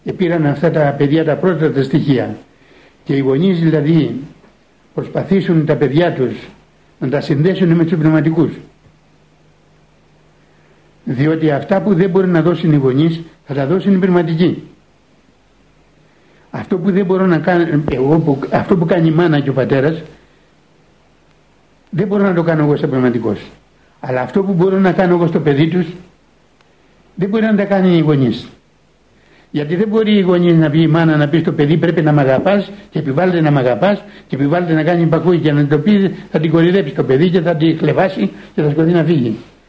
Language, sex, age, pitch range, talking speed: Greek, male, 60-79, 145-175 Hz, 180 wpm